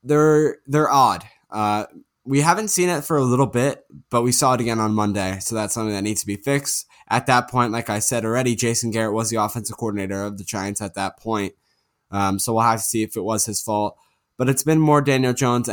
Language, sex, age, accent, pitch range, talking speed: English, male, 10-29, American, 110-130 Hz, 240 wpm